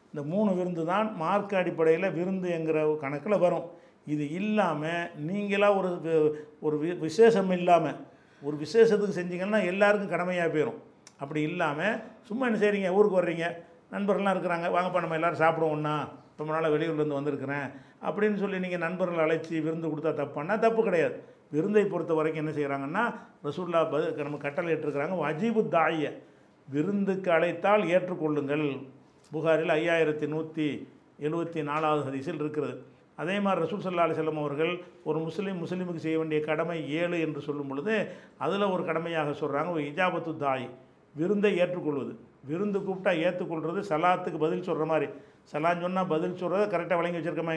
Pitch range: 150-185 Hz